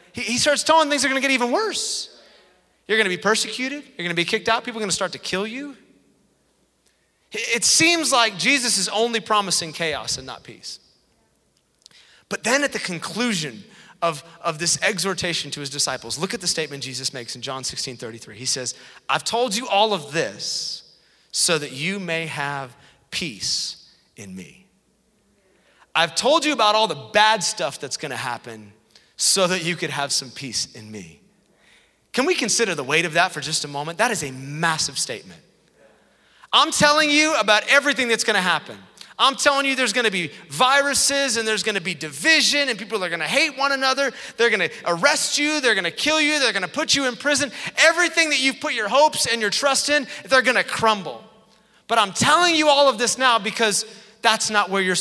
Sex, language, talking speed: male, English, 195 wpm